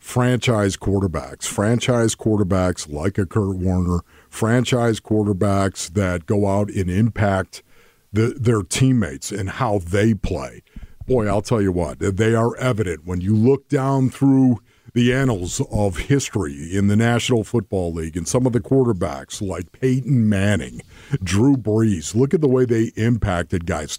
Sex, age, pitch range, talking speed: male, 50-69, 100-125 Hz, 150 wpm